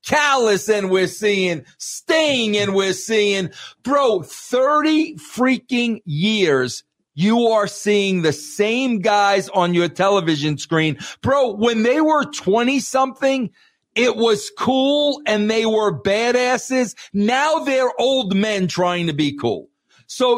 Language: English